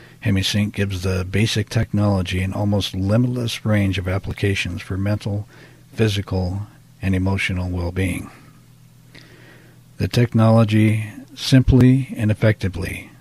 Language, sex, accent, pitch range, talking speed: English, male, American, 95-115 Hz, 100 wpm